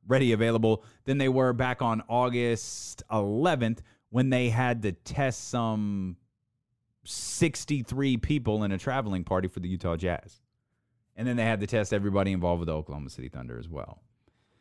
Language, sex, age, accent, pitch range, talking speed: English, male, 30-49, American, 110-145 Hz, 165 wpm